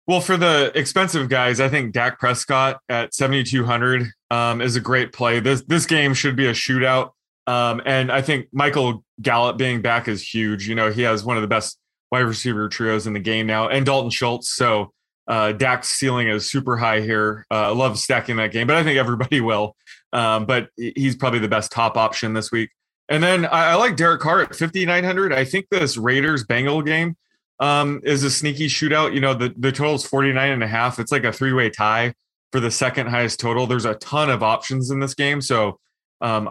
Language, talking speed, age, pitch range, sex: English, 215 wpm, 20-39, 120-140 Hz, male